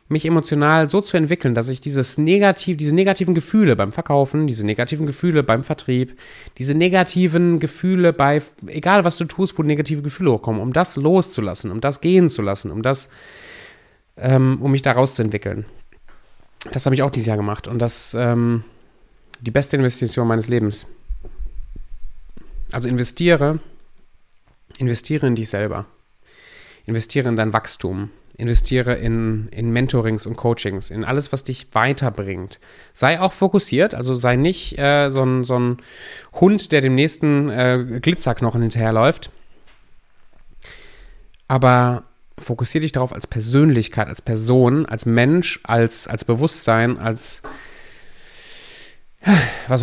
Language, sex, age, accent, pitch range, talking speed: German, male, 30-49, German, 115-155 Hz, 140 wpm